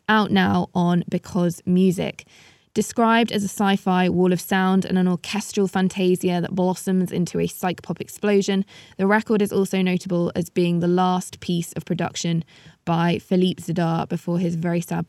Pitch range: 170-195 Hz